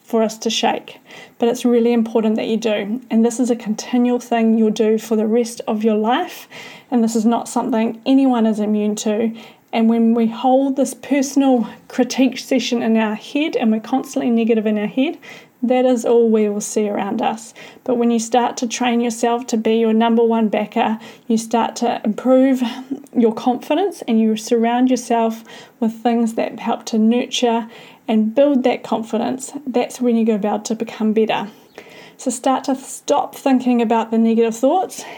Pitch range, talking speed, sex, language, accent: 225-250 Hz, 190 wpm, female, English, Australian